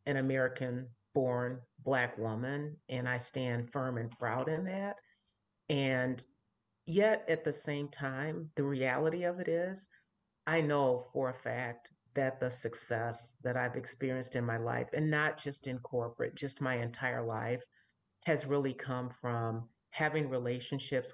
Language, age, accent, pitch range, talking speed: English, 50-69, American, 125-150 Hz, 150 wpm